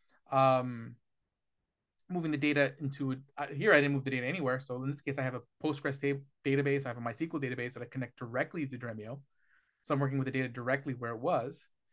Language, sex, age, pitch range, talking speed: English, male, 30-49, 130-150 Hz, 225 wpm